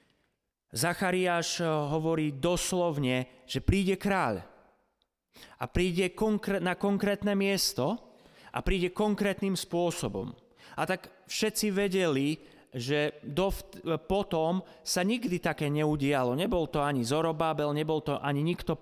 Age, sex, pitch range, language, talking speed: 30-49, male, 125-175 Hz, Slovak, 105 wpm